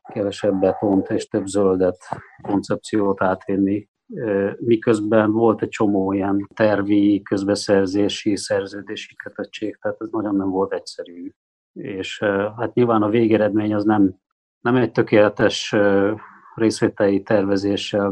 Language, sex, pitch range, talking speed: Hungarian, male, 100-110 Hz, 110 wpm